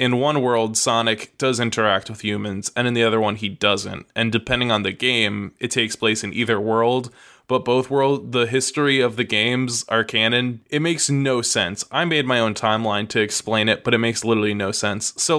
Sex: male